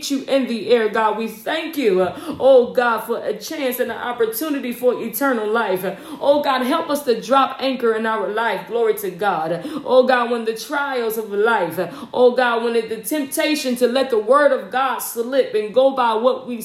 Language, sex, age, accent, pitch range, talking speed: English, female, 40-59, American, 230-280 Hz, 200 wpm